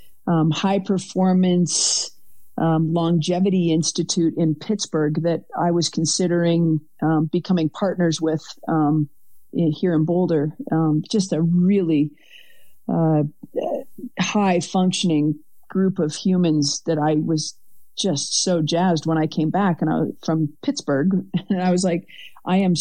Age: 40-59